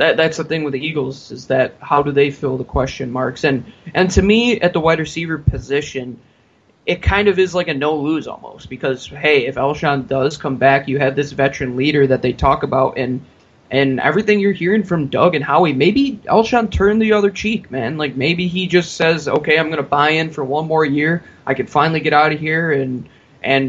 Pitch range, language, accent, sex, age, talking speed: 130-155 Hz, English, American, male, 20-39, 225 wpm